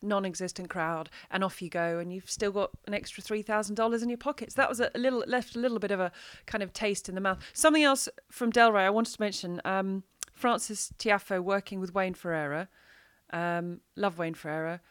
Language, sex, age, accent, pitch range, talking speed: English, female, 30-49, British, 190-235 Hz, 205 wpm